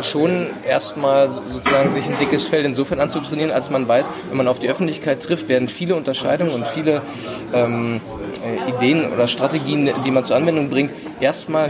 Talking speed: 170 wpm